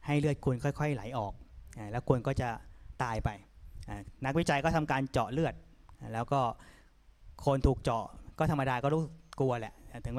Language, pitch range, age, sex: Thai, 115-155 Hz, 20-39, male